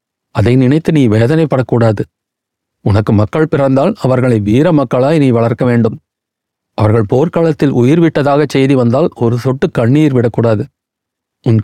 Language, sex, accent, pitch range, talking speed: Tamil, male, native, 115-150 Hz, 115 wpm